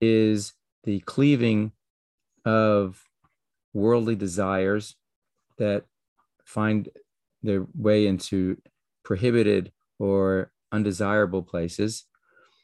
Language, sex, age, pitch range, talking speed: English, male, 40-59, 100-120 Hz, 70 wpm